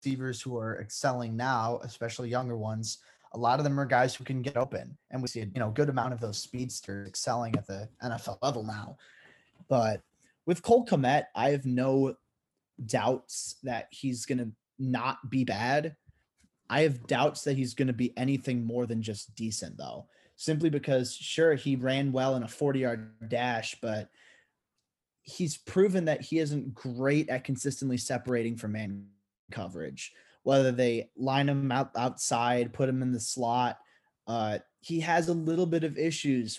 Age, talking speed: 20-39, 170 wpm